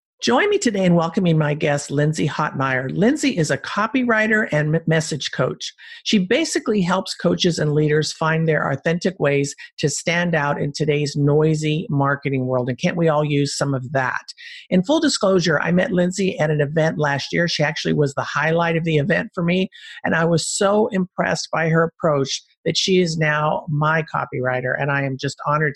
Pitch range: 145-190 Hz